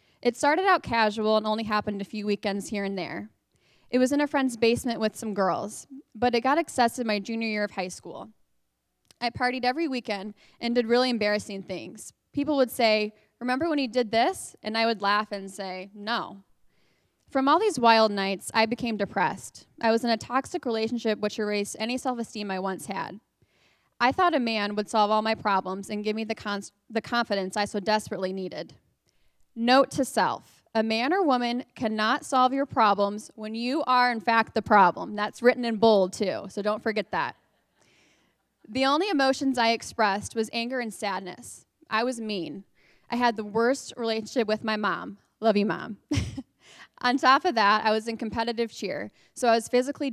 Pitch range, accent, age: 210-245 Hz, American, 20-39